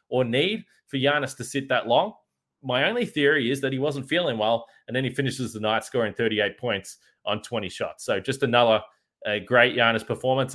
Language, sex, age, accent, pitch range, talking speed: English, male, 20-39, Australian, 110-145 Hz, 205 wpm